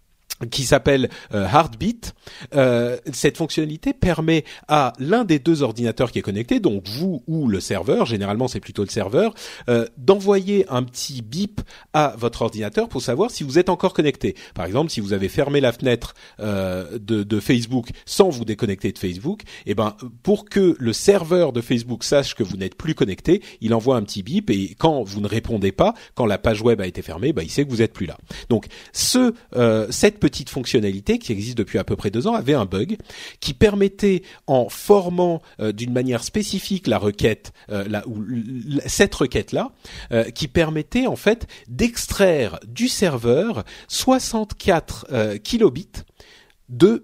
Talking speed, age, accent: 175 wpm, 40-59, French